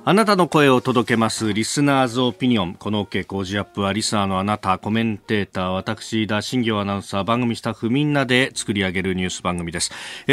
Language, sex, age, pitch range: Japanese, male, 40-59, 105-170 Hz